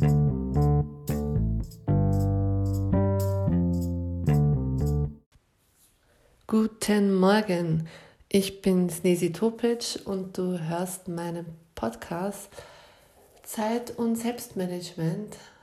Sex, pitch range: female, 160-205 Hz